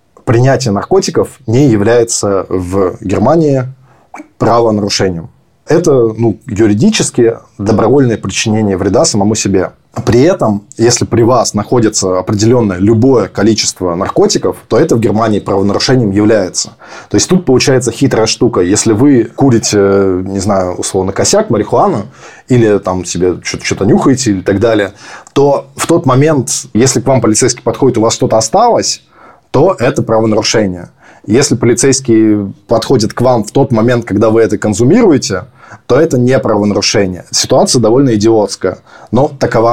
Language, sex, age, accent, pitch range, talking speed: Russian, male, 20-39, native, 100-120 Hz, 135 wpm